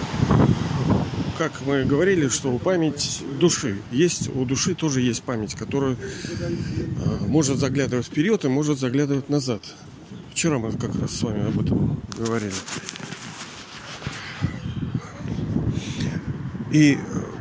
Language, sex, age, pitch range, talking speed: Russian, male, 40-59, 125-155 Hz, 110 wpm